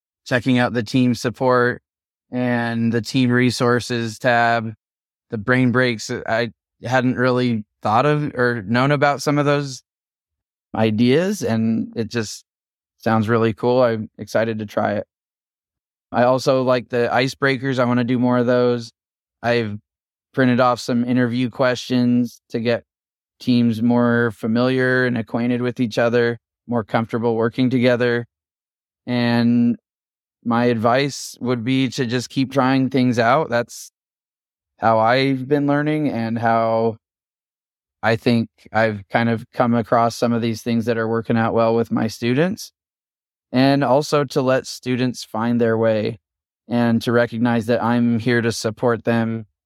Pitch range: 115-125 Hz